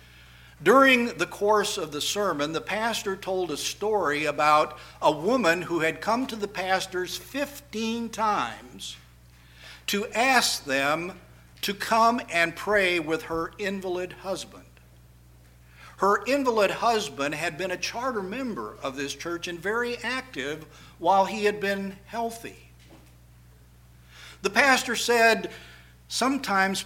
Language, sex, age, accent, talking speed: English, male, 60-79, American, 125 wpm